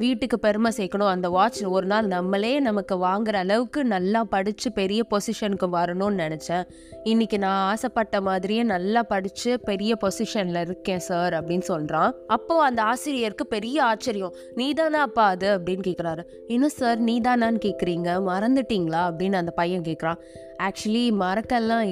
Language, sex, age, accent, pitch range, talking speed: Tamil, female, 20-39, native, 180-230 Hz, 135 wpm